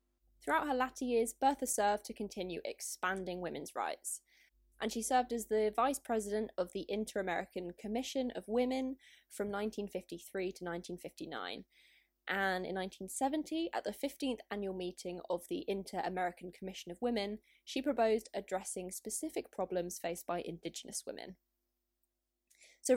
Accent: British